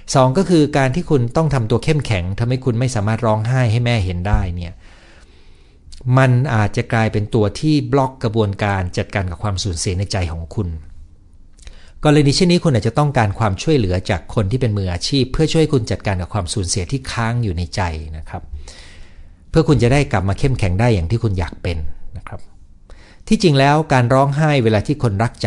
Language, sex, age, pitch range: Thai, male, 60-79, 85-125 Hz